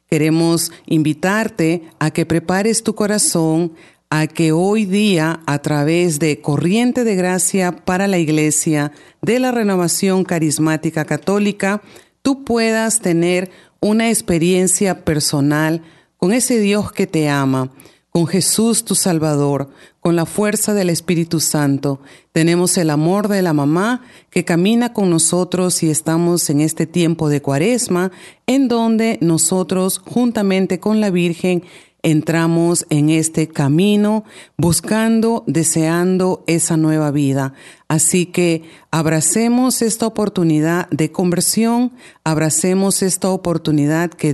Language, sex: Spanish, female